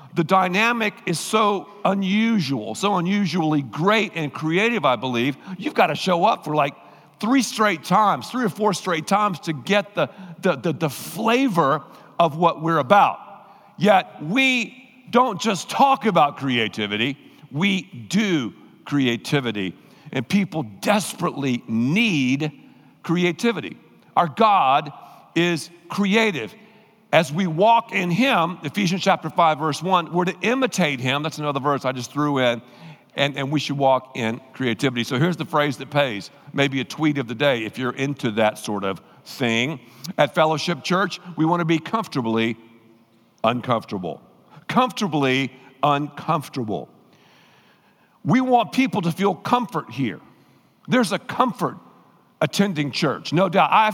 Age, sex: 50-69, male